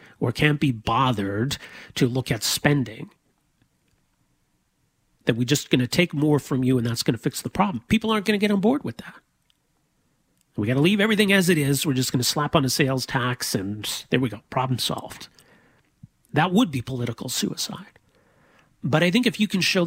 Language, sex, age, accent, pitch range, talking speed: English, male, 40-59, American, 125-170 Hz, 205 wpm